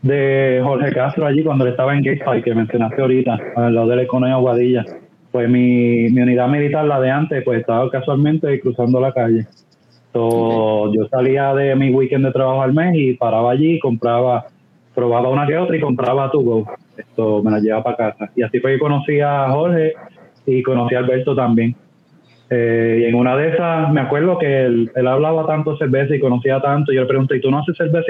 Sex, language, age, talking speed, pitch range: male, Spanish, 20-39, 210 wpm, 120-145 Hz